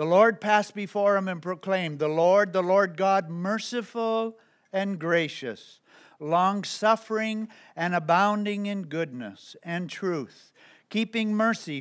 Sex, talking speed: male, 120 wpm